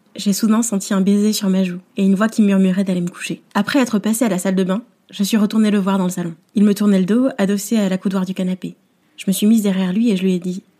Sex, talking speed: female, 300 wpm